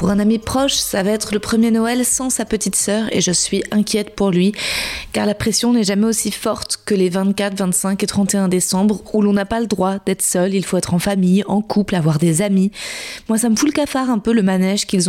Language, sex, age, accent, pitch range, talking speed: French, female, 20-39, French, 195-230 Hz, 250 wpm